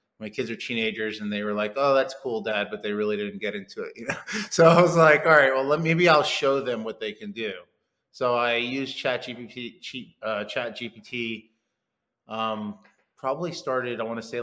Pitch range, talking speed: 105-120 Hz, 215 wpm